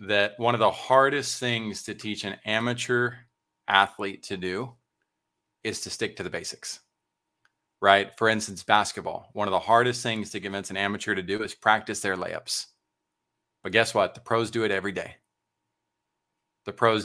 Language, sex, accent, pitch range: English, male, American, 100-115 Hz